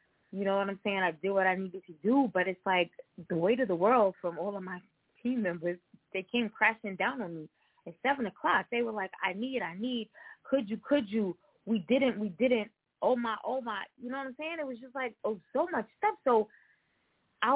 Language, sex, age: English, female, 20-39